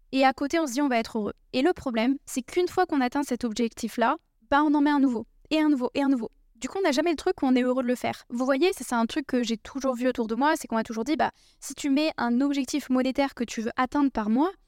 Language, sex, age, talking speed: French, female, 10-29, 315 wpm